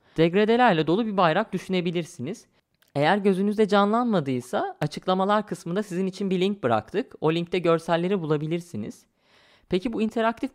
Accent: native